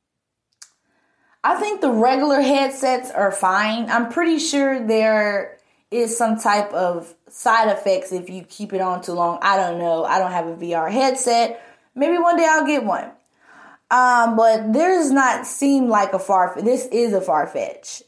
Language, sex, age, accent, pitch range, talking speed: English, female, 20-39, American, 195-270 Hz, 175 wpm